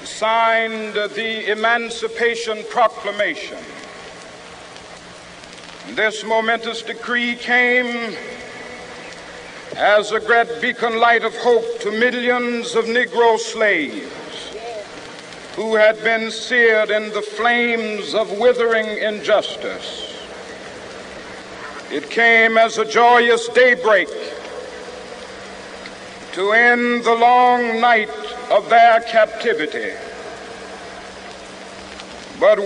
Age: 60-79